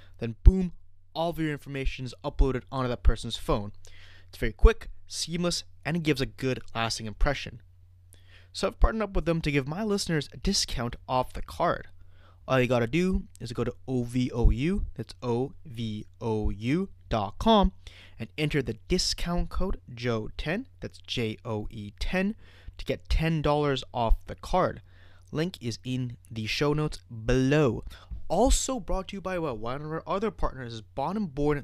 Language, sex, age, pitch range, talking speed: English, male, 20-39, 110-160 Hz, 155 wpm